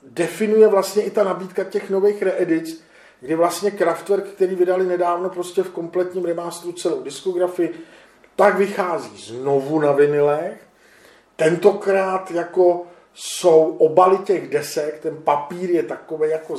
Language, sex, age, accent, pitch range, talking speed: Czech, male, 40-59, native, 155-185 Hz, 130 wpm